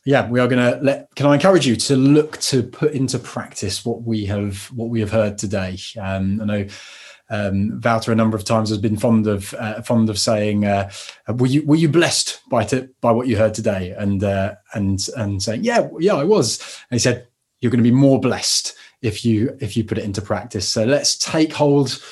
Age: 20-39